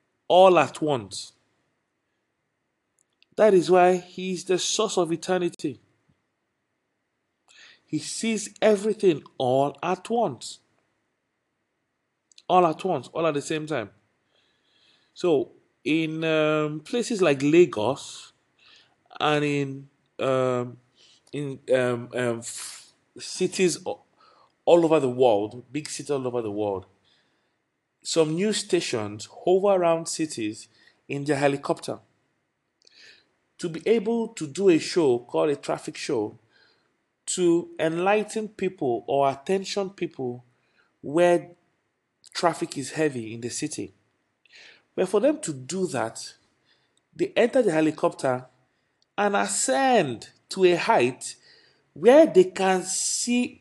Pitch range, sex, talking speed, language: 140-200 Hz, male, 115 wpm, English